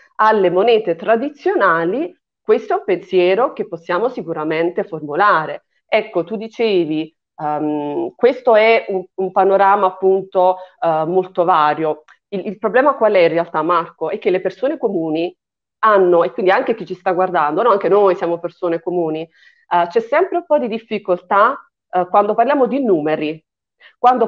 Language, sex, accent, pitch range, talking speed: Italian, female, native, 175-230 Hz, 145 wpm